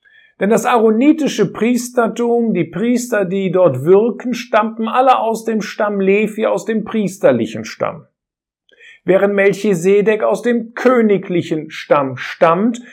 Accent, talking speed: German, 120 wpm